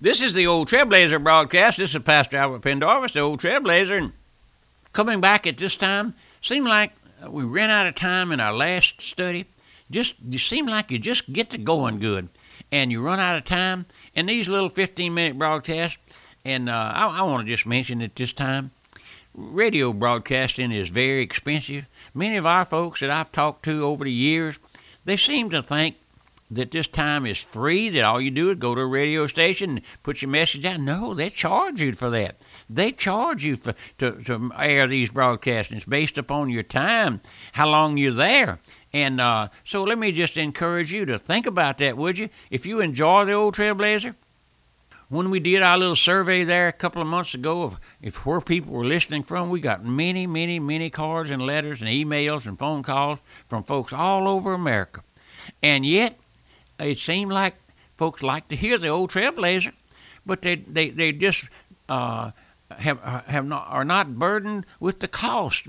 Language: English